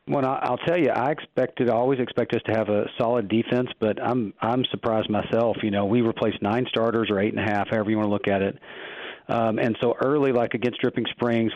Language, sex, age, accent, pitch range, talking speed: English, male, 40-59, American, 105-120 Hz, 240 wpm